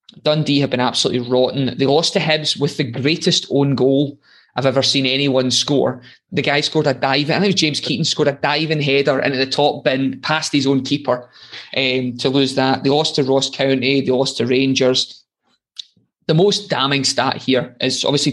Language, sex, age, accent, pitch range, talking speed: English, male, 20-39, British, 125-145 Hz, 195 wpm